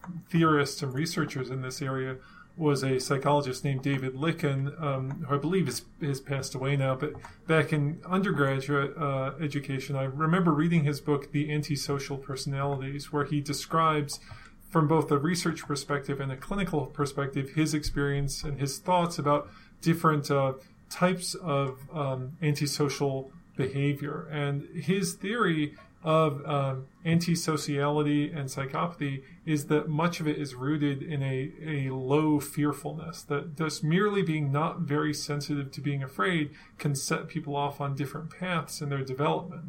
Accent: American